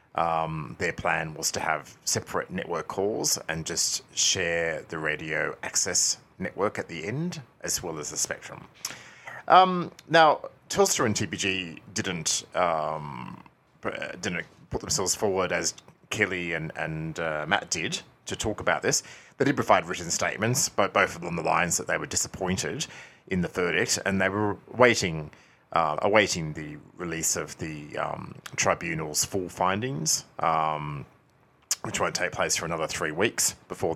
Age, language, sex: 30-49, English, male